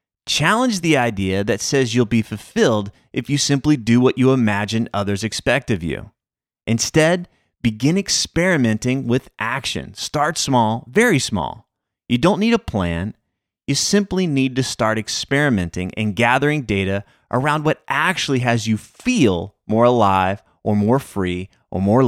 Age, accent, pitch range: 30-49, American, 105-140 Hz